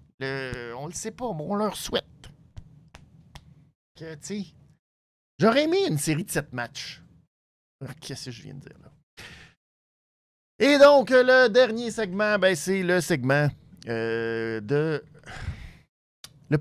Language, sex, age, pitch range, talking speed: French, male, 50-69, 120-185 Hz, 135 wpm